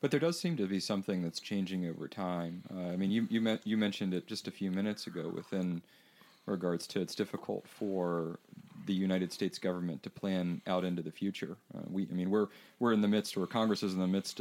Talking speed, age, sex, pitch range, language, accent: 235 wpm, 40-59, male, 90-105 Hz, English, American